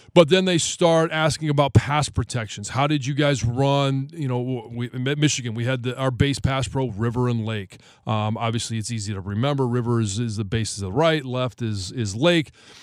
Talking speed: 215 wpm